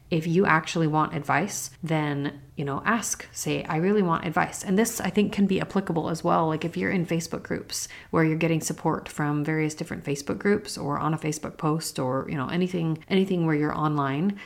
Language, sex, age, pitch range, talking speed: English, female, 30-49, 150-185 Hz, 210 wpm